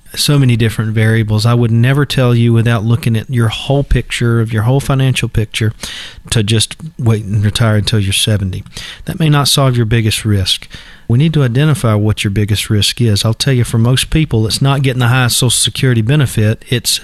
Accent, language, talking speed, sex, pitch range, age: American, English, 210 wpm, male, 110-130 Hz, 40-59